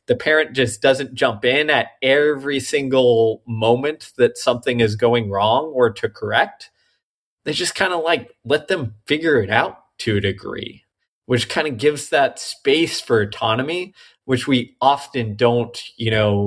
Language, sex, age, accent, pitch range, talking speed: English, male, 20-39, American, 110-130 Hz, 165 wpm